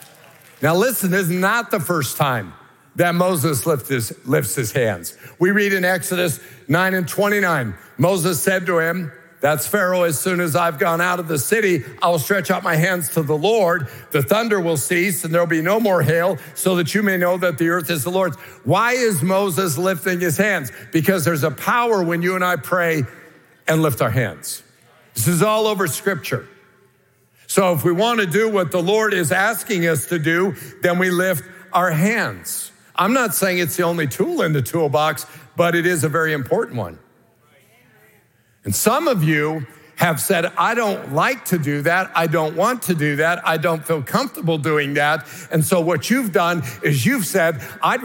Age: 60-79